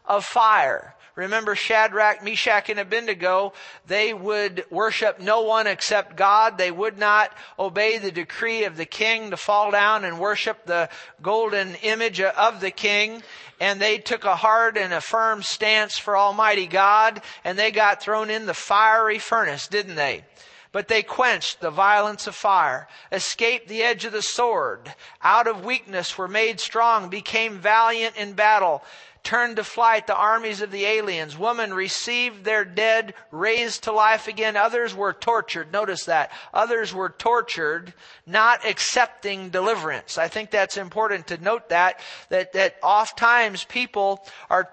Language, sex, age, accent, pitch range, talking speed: English, male, 50-69, American, 195-225 Hz, 160 wpm